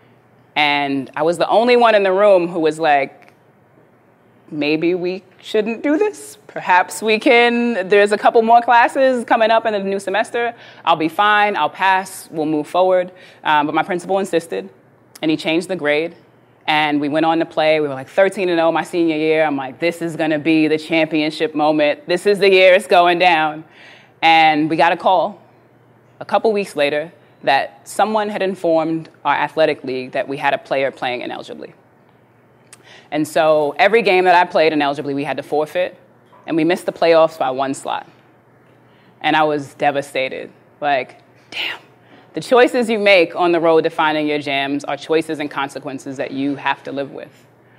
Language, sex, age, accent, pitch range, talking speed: English, female, 20-39, American, 150-195 Hz, 185 wpm